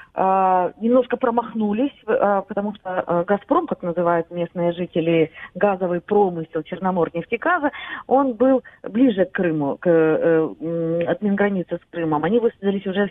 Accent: native